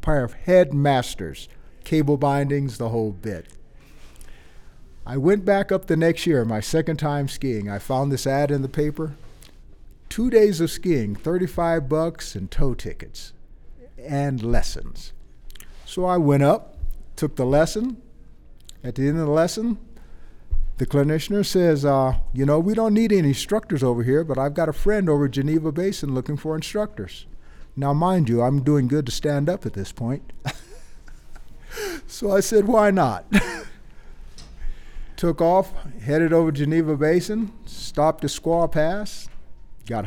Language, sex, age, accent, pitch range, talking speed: English, male, 50-69, American, 130-165 Hz, 155 wpm